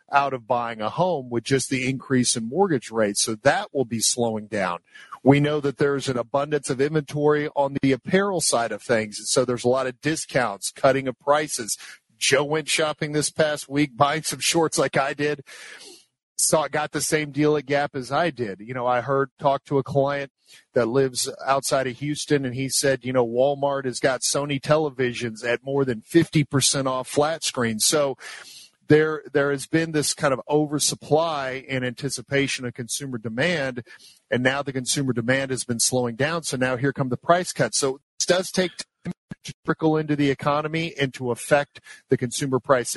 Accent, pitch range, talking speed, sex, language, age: American, 125-150 Hz, 195 wpm, male, English, 50-69